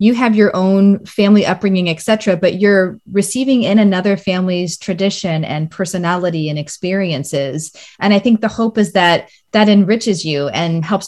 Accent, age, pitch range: American, 30-49, 170-205 Hz